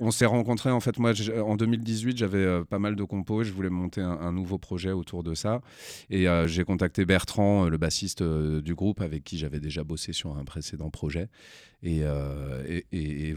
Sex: male